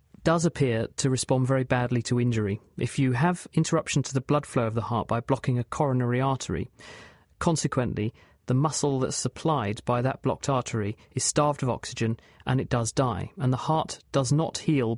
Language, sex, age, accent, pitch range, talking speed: English, male, 40-59, British, 120-145 Hz, 190 wpm